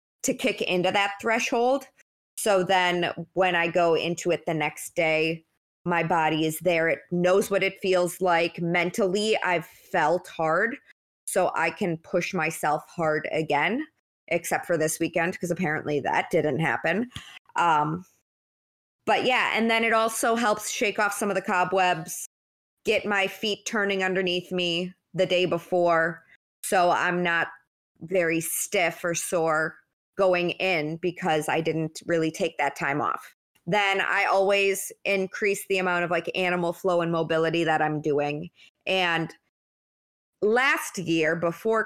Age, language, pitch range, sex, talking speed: 20-39, English, 165-195 Hz, female, 150 wpm